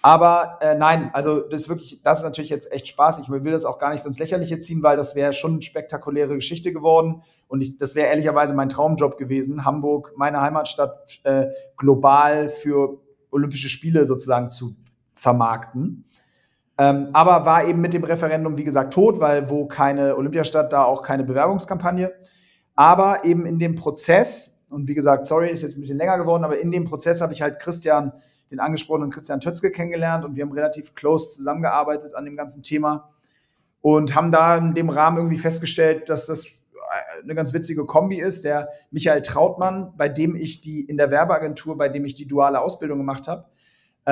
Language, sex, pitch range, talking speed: German, male, 140-160 Hz, 190 wpm